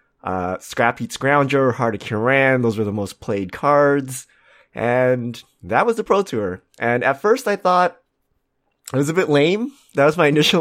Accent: American